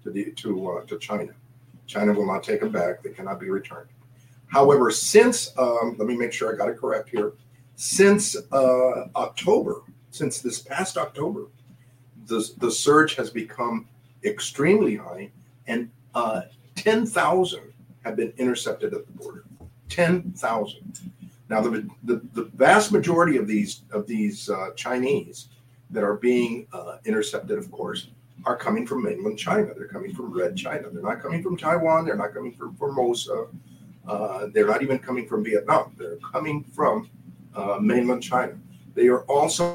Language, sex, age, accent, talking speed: English, male, 50-69, American, 165 wpm